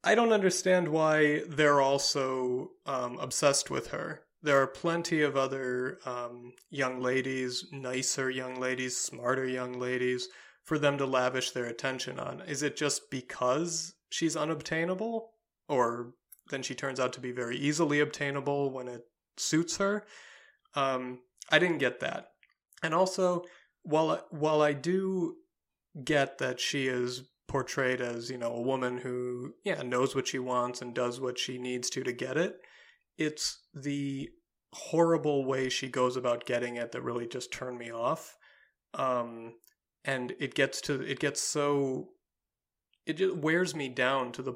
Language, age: English, 30-49